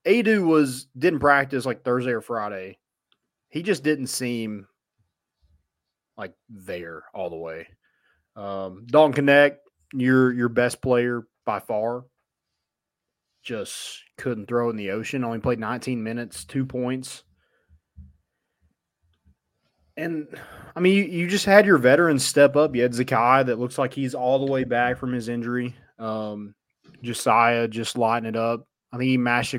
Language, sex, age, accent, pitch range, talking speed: English, male, 30-49, American, 115-135 Hz, 145 wpm